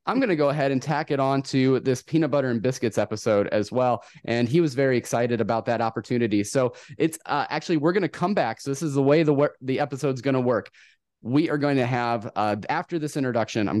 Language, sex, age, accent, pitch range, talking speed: English, male, 30-49, American, 125-155 Hz, 245 wpm